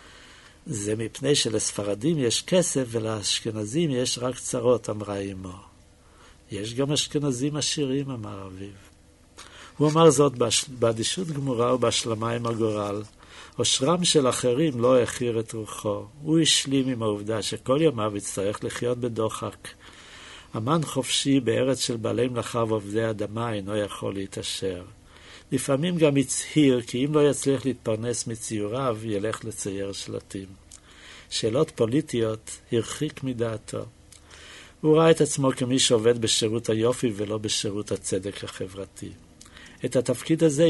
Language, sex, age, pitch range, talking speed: Hebrew, male, 60-79, 105-130 Hz, 120 wpm